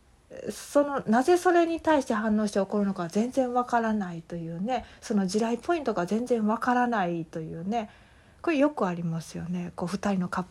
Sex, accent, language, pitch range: female, native, Japanese, 180-245 Hz